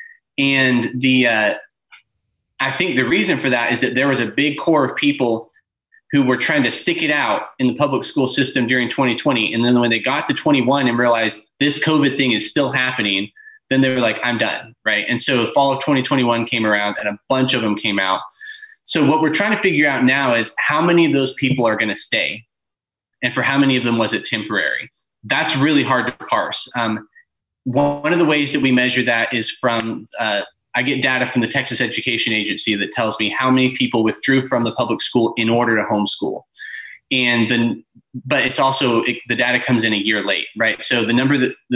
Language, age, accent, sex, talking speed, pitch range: English, 20-39, American, male, 220 wpm, 115-135 Hz